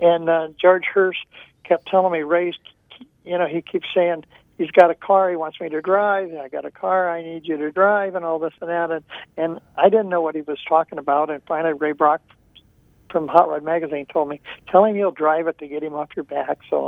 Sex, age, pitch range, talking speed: male, 60-79, 150-175 Hz, 245 wpm